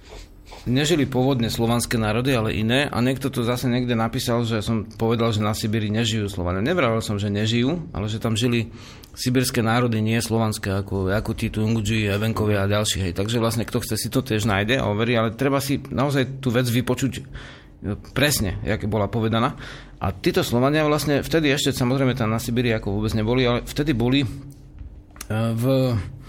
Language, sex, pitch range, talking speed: Slovak, male, 110-135 Hz, 180 wpm